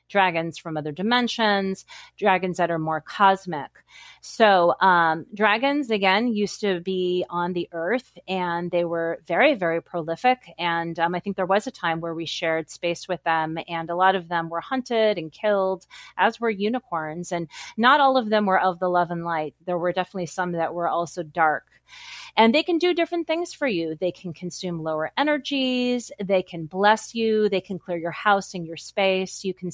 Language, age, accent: English, 30-49, American